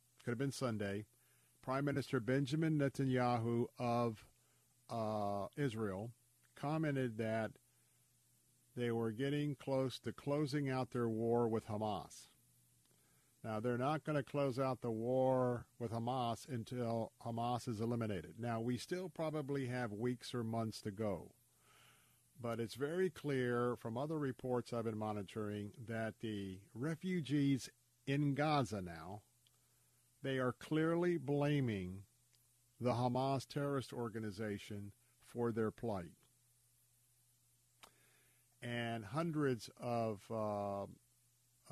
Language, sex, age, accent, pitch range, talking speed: English, male, 50-69, American, 115-130 Hz, 115 wpm